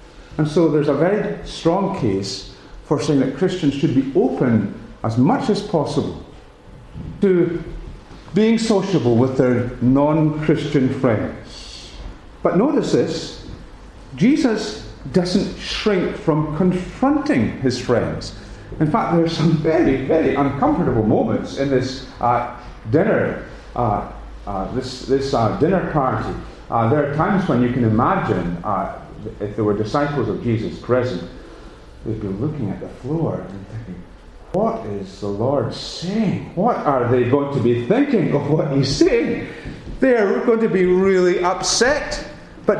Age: 40-59